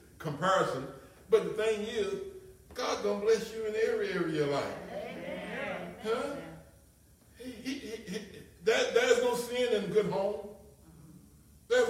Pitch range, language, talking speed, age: 180-275 Hz, English, 150 wpm, 60-79